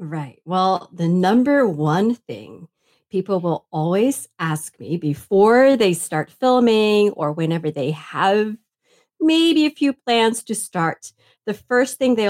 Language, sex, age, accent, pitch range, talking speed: English, female, 40-59, American, 170-235 Hz, 140 wpm